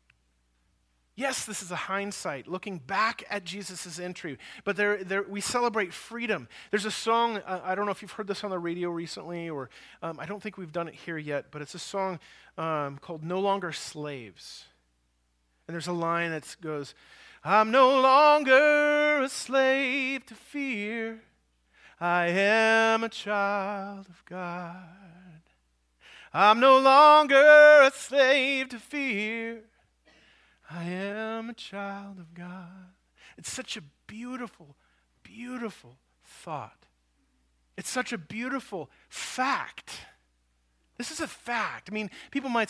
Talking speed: 140 wpm